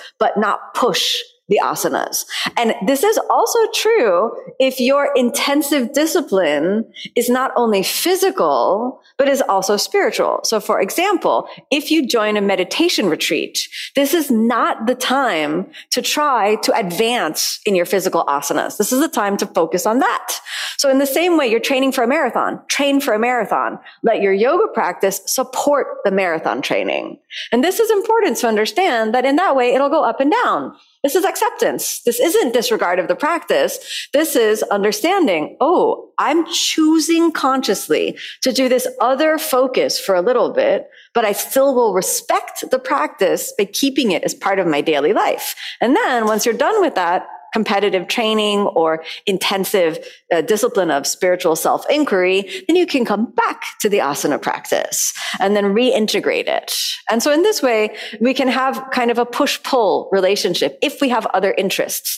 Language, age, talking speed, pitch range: English, 30-49, 170 wpm, 215-345 Hz